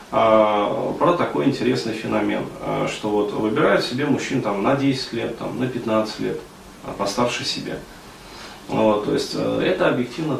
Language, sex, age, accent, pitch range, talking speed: Russian, male, 30-49, native, 105-130 Hz, 140 wpm